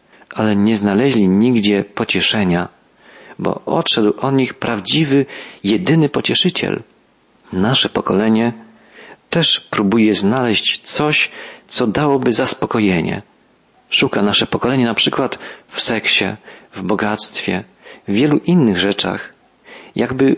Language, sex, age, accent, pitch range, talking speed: Polish, male, 40-59, native, 105-135 Hz, 105 wpm